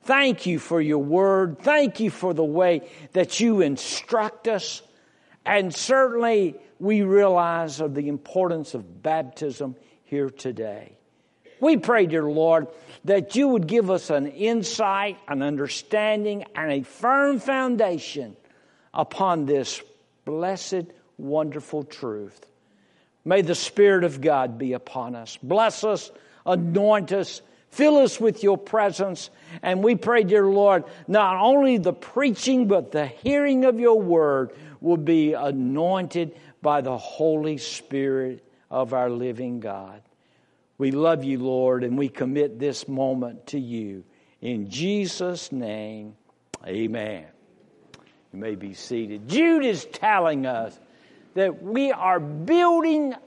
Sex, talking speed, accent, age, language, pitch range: male, 130 wpm, American, 60-79, English, 140-215 Hz